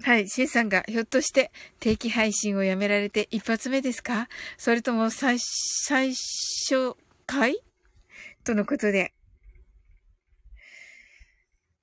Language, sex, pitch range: Japanese, female, 215-320 Hz